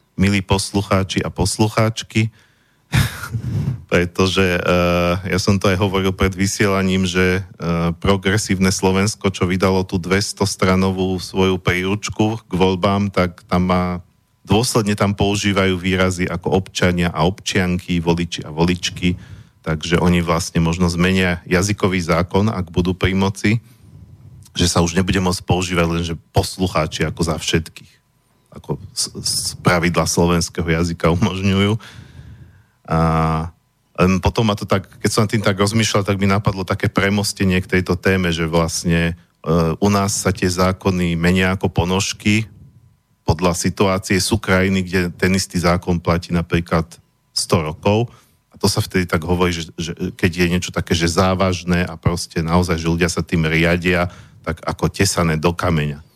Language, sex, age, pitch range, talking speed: Slovak, male, 40-59, 85-100 Hz, 145 wpm